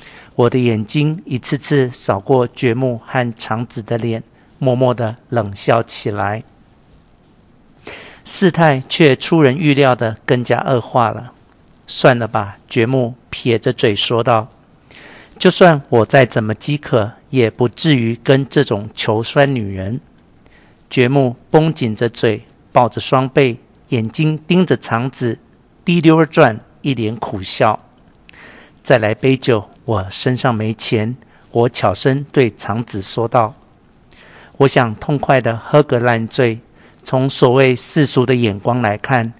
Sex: male